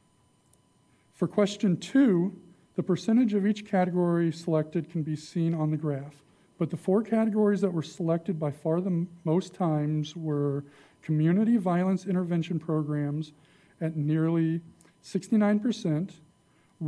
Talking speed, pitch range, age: 125 wpm, 155-185 Hz, 40-59